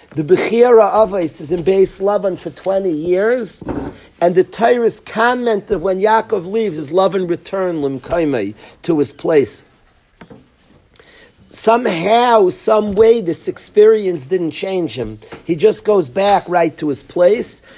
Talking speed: 140 wpm